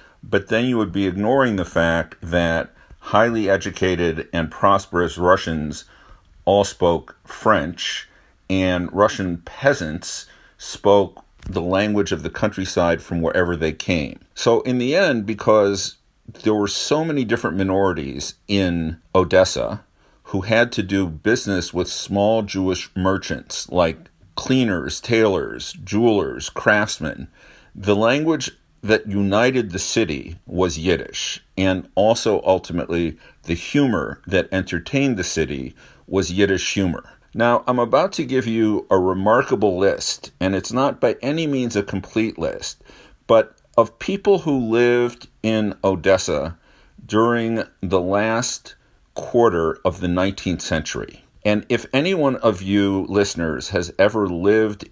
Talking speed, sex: 130 wpm, male